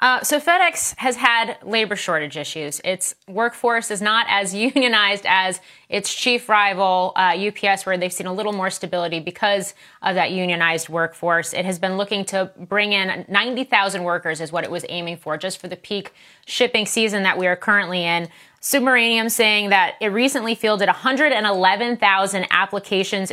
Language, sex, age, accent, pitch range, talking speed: English, female, 30-49, American, 180-215 Hz, 170 wpm